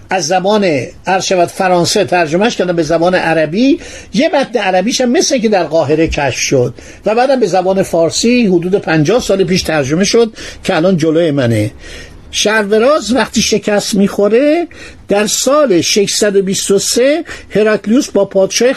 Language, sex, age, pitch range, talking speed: Persian, male, 60-79, 170-225 Hz, 140 wpm